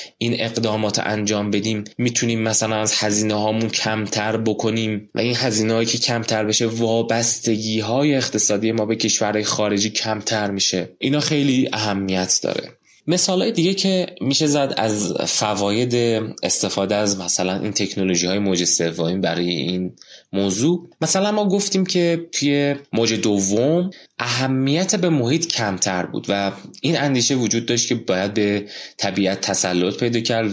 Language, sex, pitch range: Persian, male, 95-120 Hz